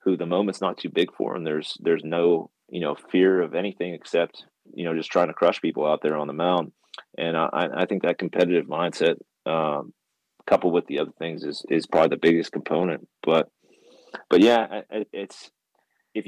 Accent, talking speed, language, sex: American, 195 wpm, English, male